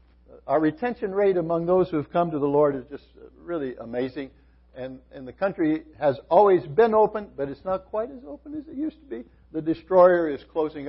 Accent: American